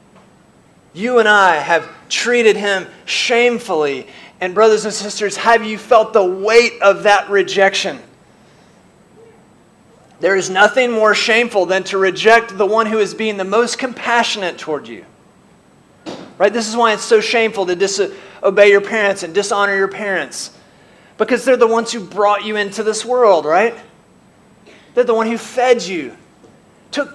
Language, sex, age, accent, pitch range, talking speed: English, male, 30-49, American, 190-235 Hz, 155 wpm